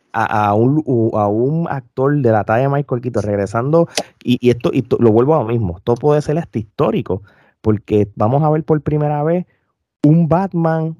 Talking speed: 205 wpm